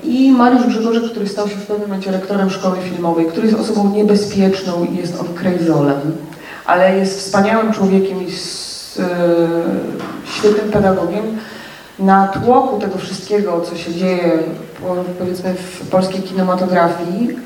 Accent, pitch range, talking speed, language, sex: native, 185-230 Hz, 140 wpm, Polish, female